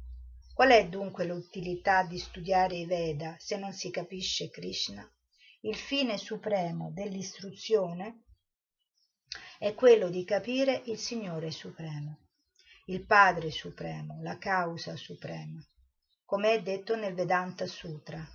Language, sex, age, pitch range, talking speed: Italian, female, 50-69, 155-195 Hz, 120 wpm